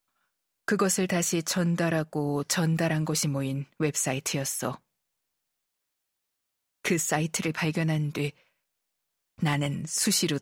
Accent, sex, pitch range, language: native, female, 145-175 Hz, Korean